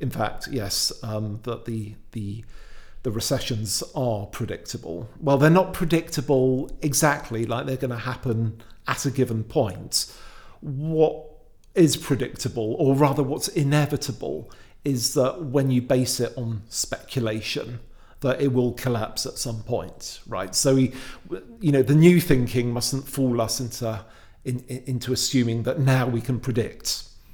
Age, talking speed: 50-69, 150 wpm